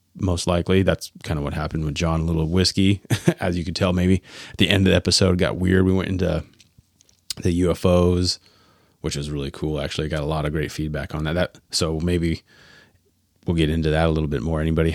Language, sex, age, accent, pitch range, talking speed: English, male, 30-49, American, 80-90 Hz, 215 wpm